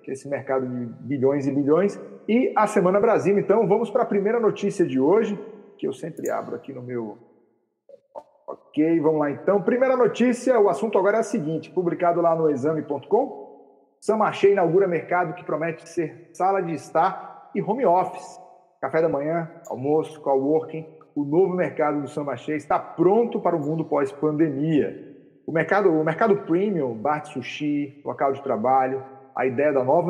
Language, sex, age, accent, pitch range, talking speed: Portuguese, male, 40-59, Brazilian, 140-185 Hz, 165 wpm